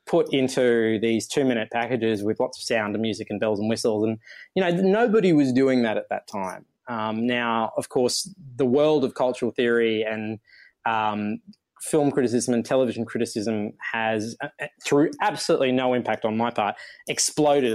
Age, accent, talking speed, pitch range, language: 20-39, Australian, 175 wpm, 110-130 Hz, English